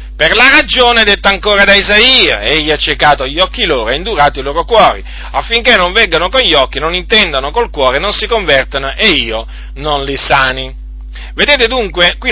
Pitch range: 130-195 Hz